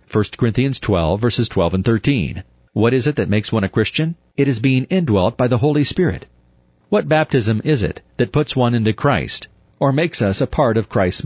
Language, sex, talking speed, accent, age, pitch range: English, male, 210 wpm, American, 40-59, 100-125 Hz